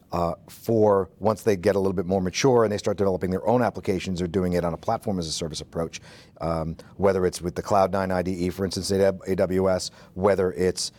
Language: English